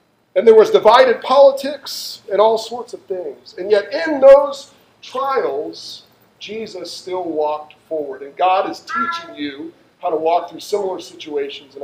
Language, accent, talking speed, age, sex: English, American, 155 wpm, 40-59, male